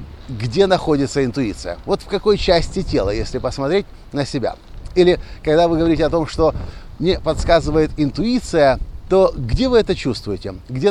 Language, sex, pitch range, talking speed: Russian, male, 110-165 Hz, 155 wpm